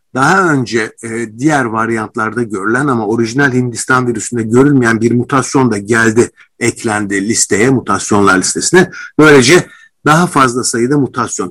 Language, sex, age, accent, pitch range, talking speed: Turkish, male, 50-69, native, 115-150 Hz, 120 wpm